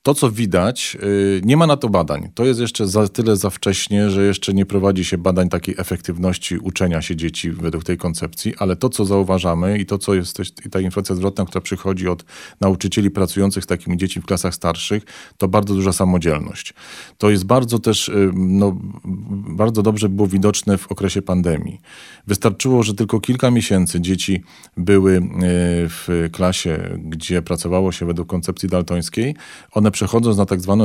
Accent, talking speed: native, 170 wpm